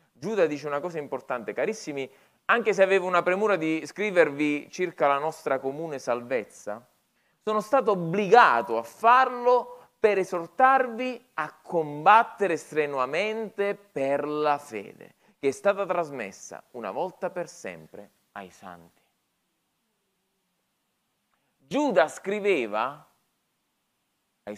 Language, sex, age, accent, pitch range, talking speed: Italian, male, 30-49, native, 140-215 Hz, 105 wpm